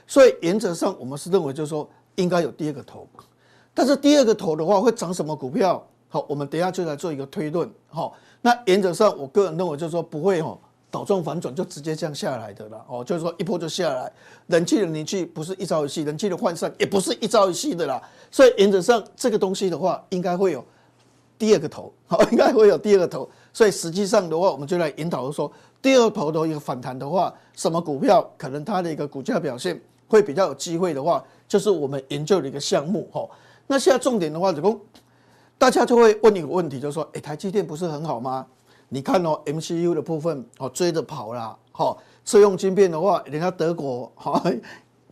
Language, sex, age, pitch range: Chinese, male, 50-69, 150-205 Hz